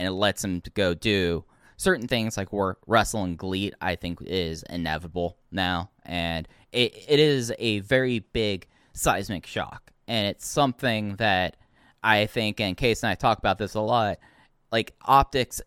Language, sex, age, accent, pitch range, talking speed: English, male, 10-29, American, 90-120 Hz, 170 wpm